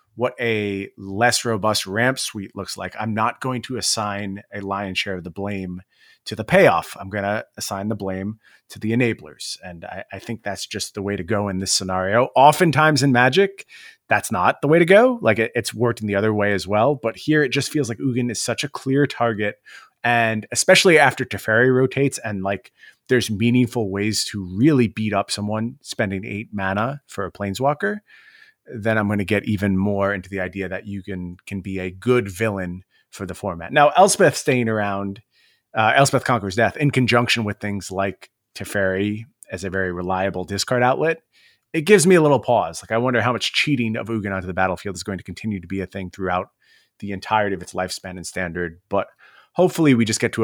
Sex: male